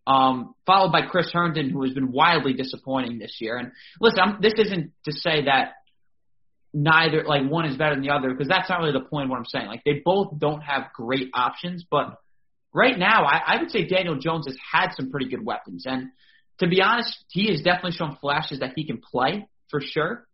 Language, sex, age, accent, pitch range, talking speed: English, male, 20-39, American, 135-175 Hz, 220 wpm